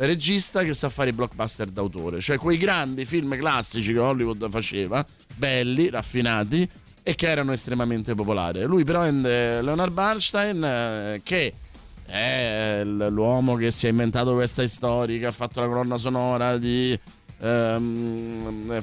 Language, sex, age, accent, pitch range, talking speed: Italian, male, 30-49, native, 115-140 Hz, 145 wpm